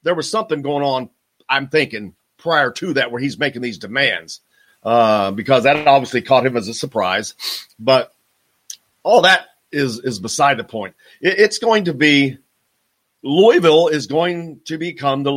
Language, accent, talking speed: English, American, 170 wpm